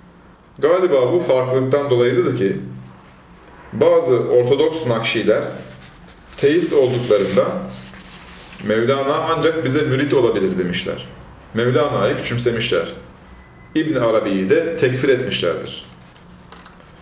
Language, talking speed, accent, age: Turkish, 80 wpm, native, 40-59